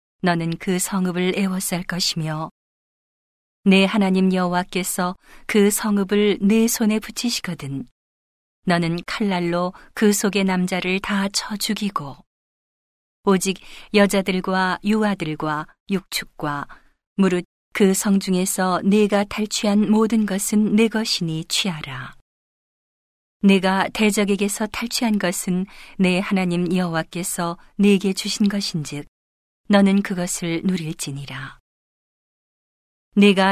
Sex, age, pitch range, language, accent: female, 40-59, 170-205 Hz, Korean, native